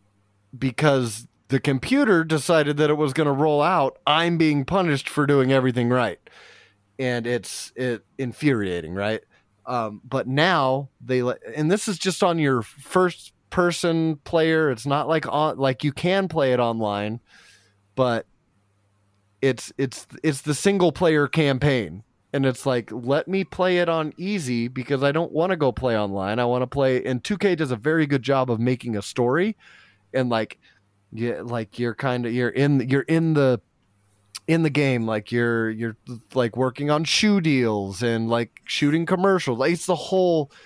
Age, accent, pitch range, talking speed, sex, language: 30-49, American, 115-150 Hz, 175 wpm, male, English